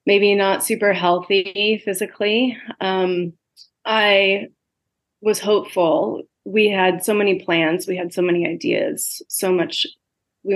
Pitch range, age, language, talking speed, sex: 185-215 Hz, 30-49, English, 125 wpm, female